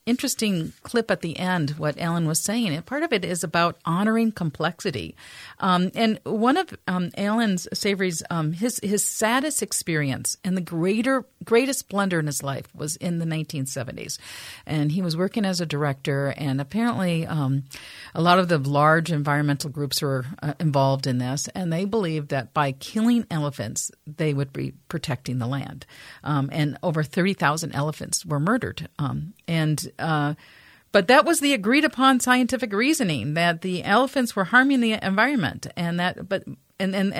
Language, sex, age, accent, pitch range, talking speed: English, female, 50-69, American, 155-225 Hz, 170 wpm